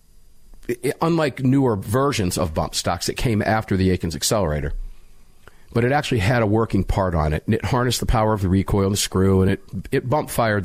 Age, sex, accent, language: 50-69, male, American, English